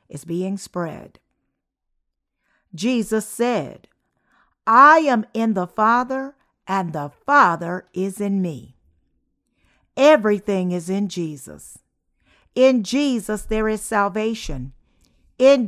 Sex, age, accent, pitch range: female, 50-69, American, 195-250 Hz